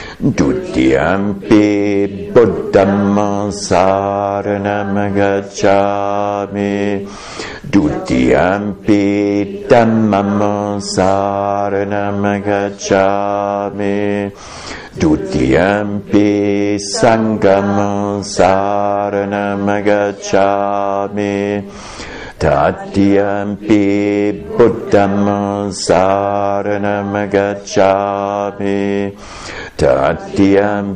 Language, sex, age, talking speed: English, male, 60-79, 30 wpm